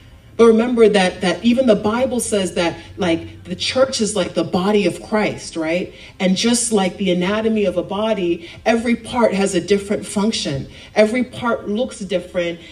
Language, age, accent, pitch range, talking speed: English, 40-59, American, 185-230 Hz, 175 wpm